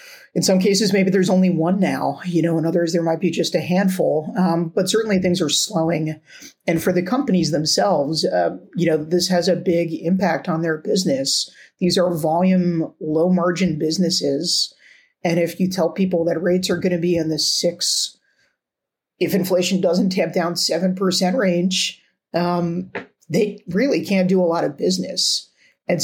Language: English